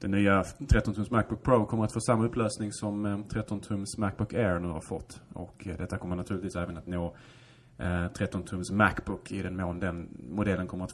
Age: 20-39